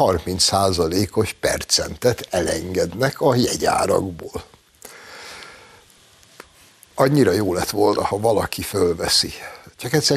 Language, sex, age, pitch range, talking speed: Hungarian, male, 60-79, 95-120 Hz, 90 wpm